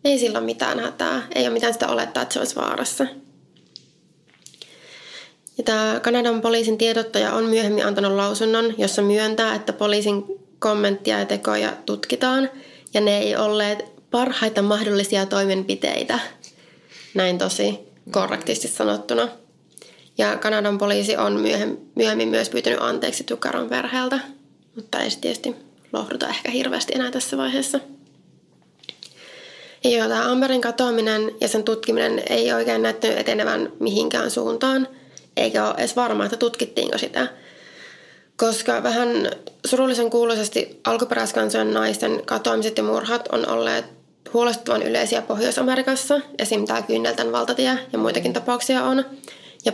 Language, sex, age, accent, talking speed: Finnish, female, 20-39, native, 125 wpm